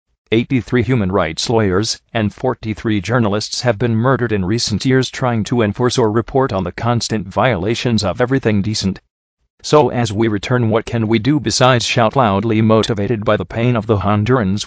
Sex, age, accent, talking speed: male, 40-59, American, 175 wpm